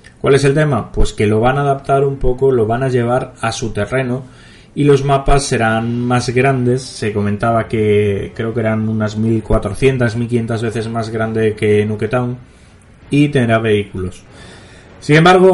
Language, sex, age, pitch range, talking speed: Spanish, male, 30-49, 105-130 Hz, 170 wpm